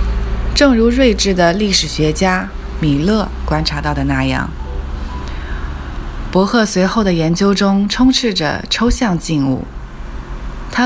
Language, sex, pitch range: Chinese, female, 140-195 Hz